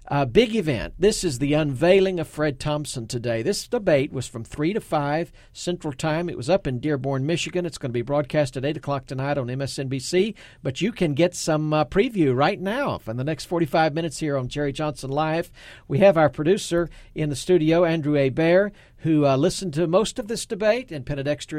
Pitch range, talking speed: 135-180 Hz, 210 wpm